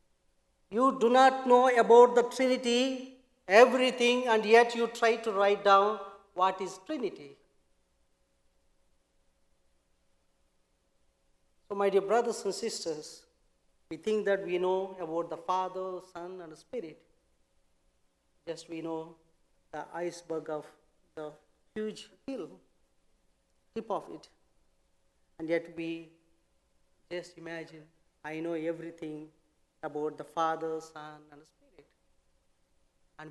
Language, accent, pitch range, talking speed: English, Indian, 165-230 Hz, 115 wpm